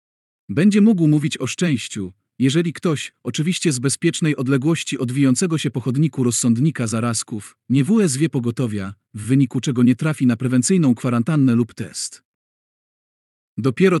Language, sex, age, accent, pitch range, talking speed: Polish, male, 40-59, native, 120-155 Hz, 140 wpm